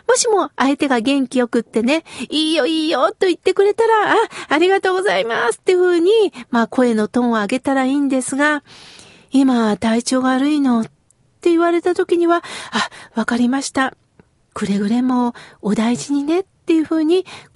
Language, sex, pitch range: Japanese, female, 245-355 Hz